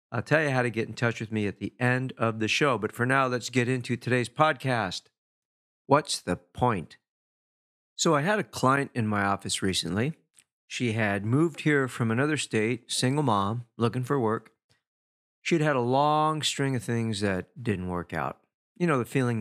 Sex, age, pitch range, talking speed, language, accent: male, 50-69, 110-145 Hz, 195 wpm, English, American